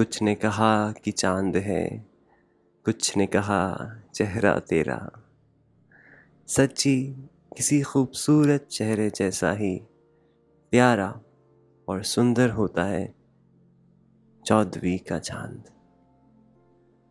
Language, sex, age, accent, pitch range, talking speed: Hindi, male, 30-49, native, 95-120 Hz, 90 wpm